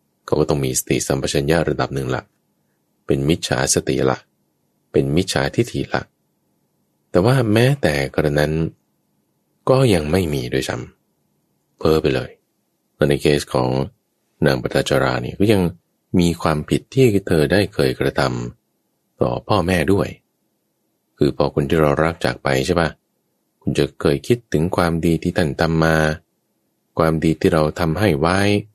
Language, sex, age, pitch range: English, male, 20-39, 75-110 Hz